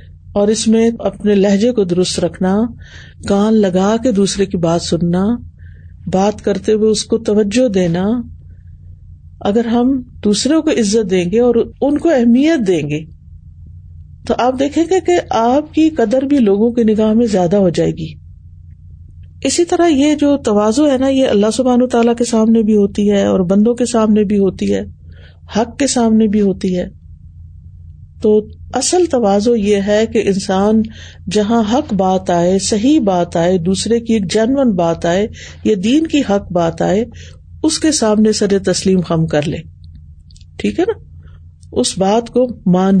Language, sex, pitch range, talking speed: Urdu, female, 155-235 Hz, 175 wpm